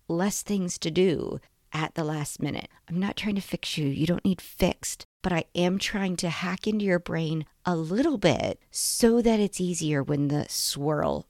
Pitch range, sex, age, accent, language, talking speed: 155-195 Hz, female, 40-59, American, English, 195 wpm